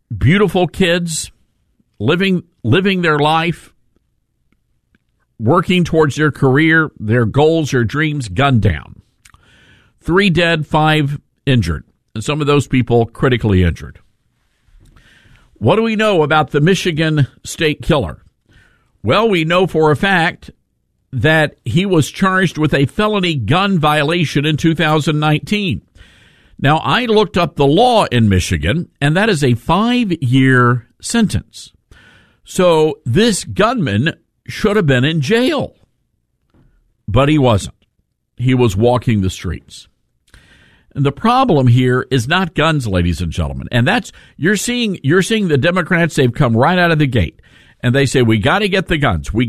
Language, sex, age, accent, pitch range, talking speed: English, male, 50-69, American, 120-175 Hz, 145 wpm